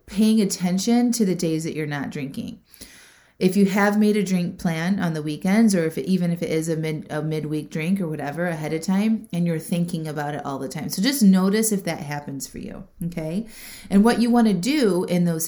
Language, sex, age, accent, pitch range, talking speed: English, female, 30-49, American, 160-210 Hz, 235 wpm